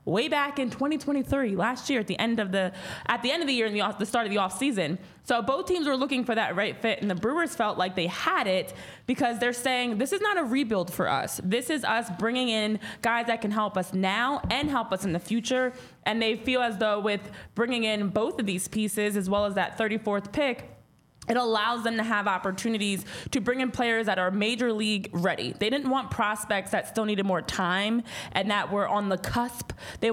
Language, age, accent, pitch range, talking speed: English, 20-39, American, 195-240 Hz, 235 wpm